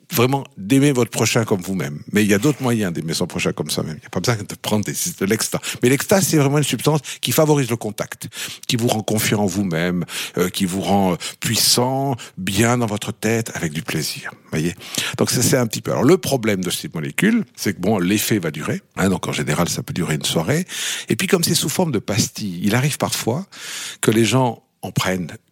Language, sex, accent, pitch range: French, male, French, 95-140 Hz